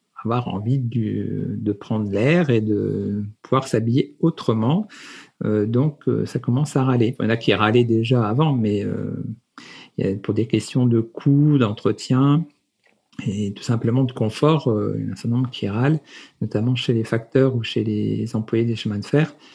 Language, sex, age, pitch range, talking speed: French, male, 50-69, 110-135 Hz, 195 wpm